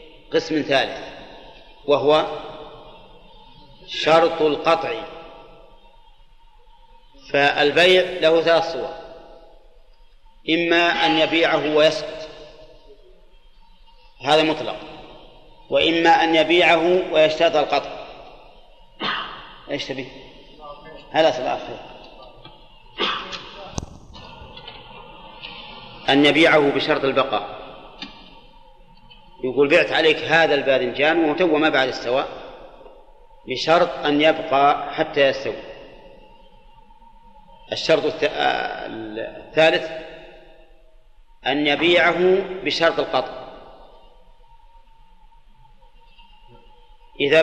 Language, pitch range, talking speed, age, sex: Arabic, 155-230 Hz, 60 wpm, 40-59, male